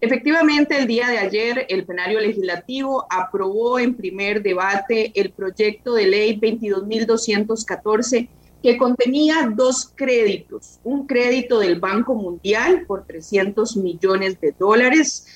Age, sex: 30-49, female